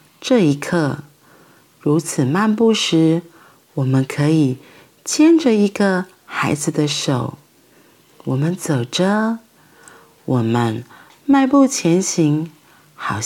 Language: Chinese